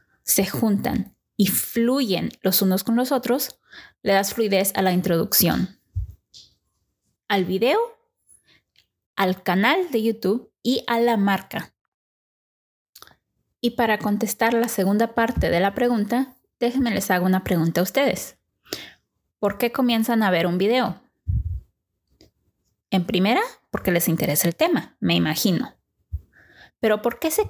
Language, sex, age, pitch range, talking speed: English, female, 20-39, 185-240 Hz, 135 wpm